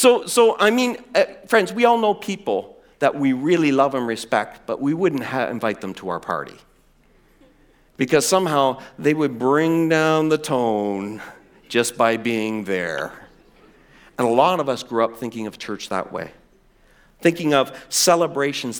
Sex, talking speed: male, 165 wpm